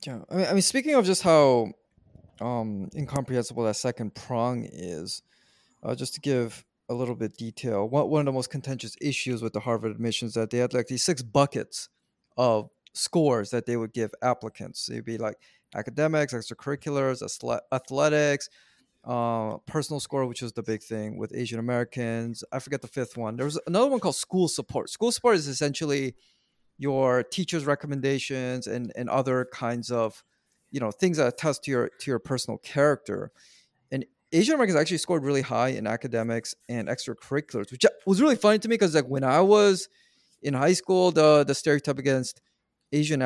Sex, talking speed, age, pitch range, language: male, 185 wpm, 30-49, 120-150 Hz, English